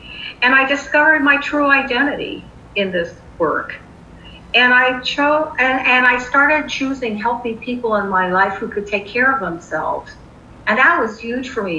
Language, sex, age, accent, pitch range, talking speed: English, female, 50-69, American, 185-265 Hz, 175 wpm